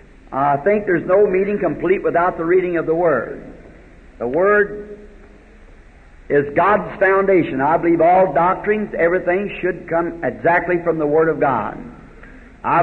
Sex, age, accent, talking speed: male, 60-79, American, 145 wpm